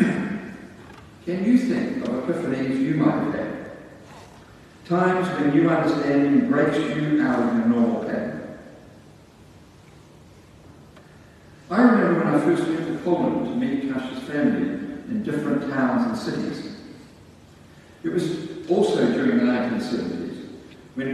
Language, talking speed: English, 130 wpm